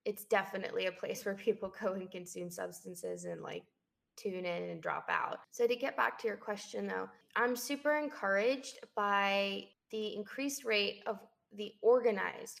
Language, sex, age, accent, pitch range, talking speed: English, female, 20-39, American, 180-230 Hz, 165 wpm